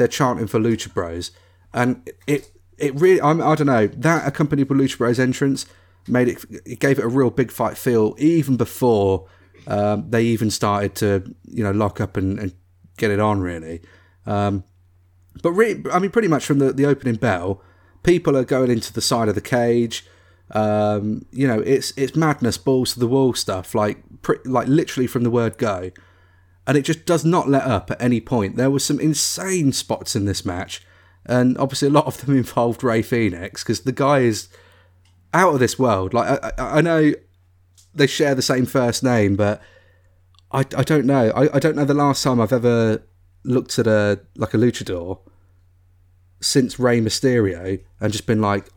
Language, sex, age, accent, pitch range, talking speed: English, male, 30-49, British, 95-135 Hz, 195 wpm